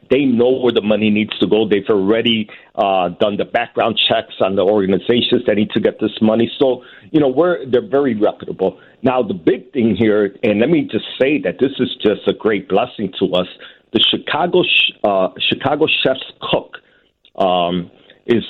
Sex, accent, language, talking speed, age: male, American, English, 190 wpm, 50-69